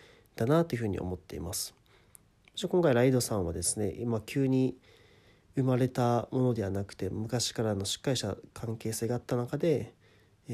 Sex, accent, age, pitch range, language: male, native, 40-59, 100-130 Hz, Japanese